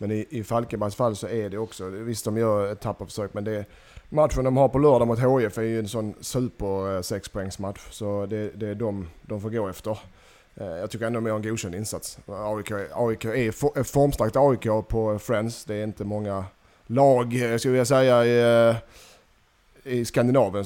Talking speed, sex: 180 wpm, male